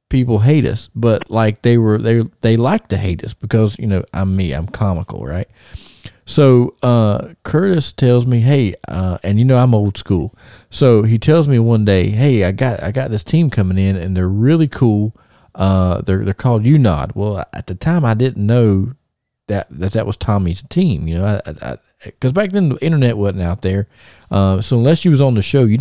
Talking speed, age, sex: 210 wpm, 40-59, male